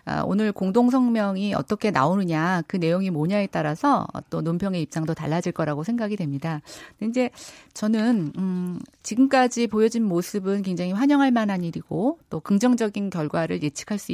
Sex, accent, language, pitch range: female, native, Korean, 165-235 Hz